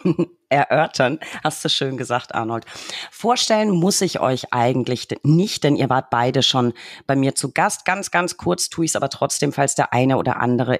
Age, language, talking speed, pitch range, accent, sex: 40-59, German, 190 wpm, 125-160 Hz, German, female